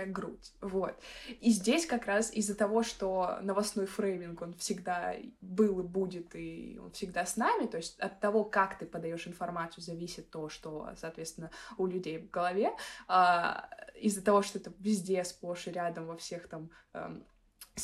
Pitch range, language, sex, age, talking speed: 175-220 Hz, Russian, female, 20-39, 165 wpm